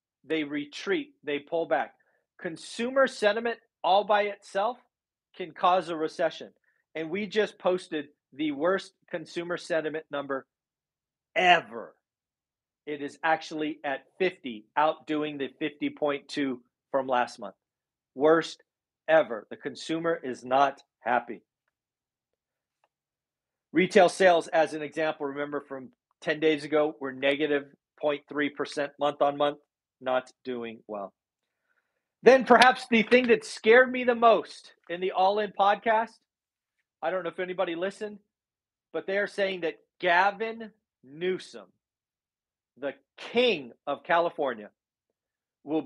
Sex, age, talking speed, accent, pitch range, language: male, 40-59, 120 wpm, American, 145-190 Hz, English